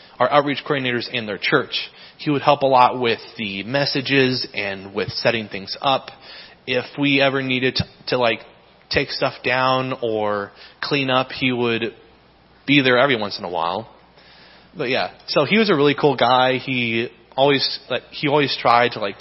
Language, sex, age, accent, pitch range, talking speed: English, male, 20-39, American, 115-135 Hz, 180 wpm